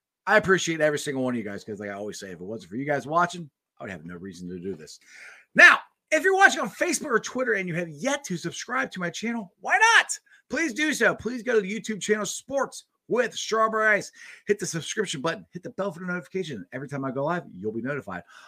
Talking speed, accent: 255 wpm, American